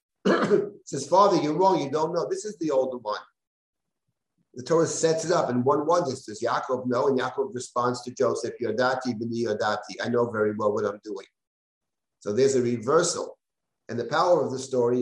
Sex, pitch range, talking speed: male, 125-160 Hz, 180 wpm